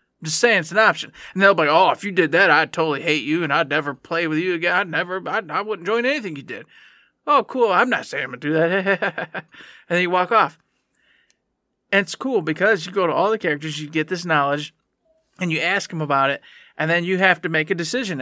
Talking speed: 255 wpm